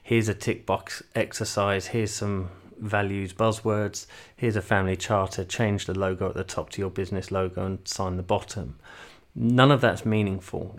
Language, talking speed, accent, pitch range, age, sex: English, 170 wpm, British, 95-115 Hz, 30-49, male